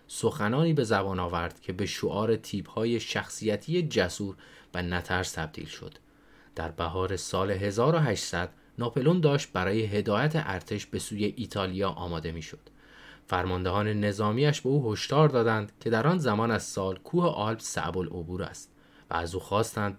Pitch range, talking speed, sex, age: 95-120 Hz, 145 wpm, male, 30-49